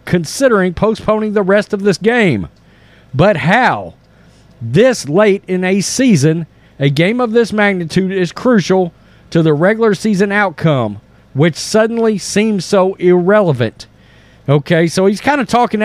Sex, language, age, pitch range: male, English, 40-59, 150-210 Hz